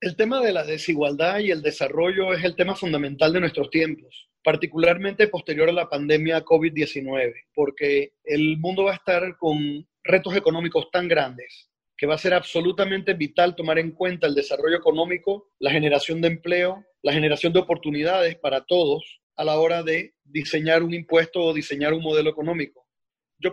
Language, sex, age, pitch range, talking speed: Spanish, male, 30-49, 155-195 Hz, 170 wpm